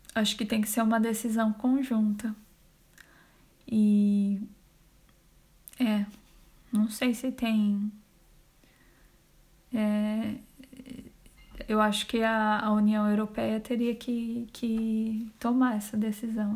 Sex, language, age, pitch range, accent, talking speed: female, Portuguese, 20-39, 215-235 Hz, Brazilian, 100 wpm